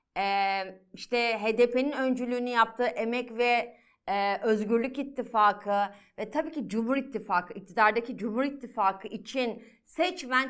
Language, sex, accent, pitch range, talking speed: Turkish, female, native, 205-270 Hz, 105 wpm